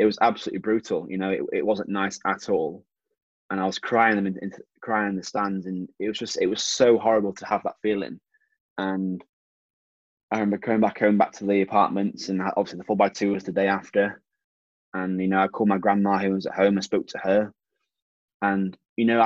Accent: British